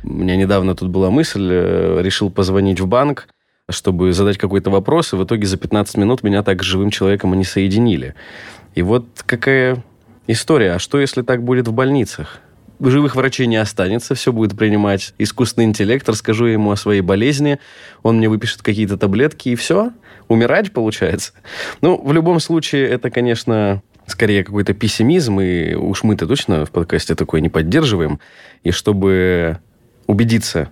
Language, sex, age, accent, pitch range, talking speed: Russian, male, 20-39, native, 95-120 Hz, 160 wpm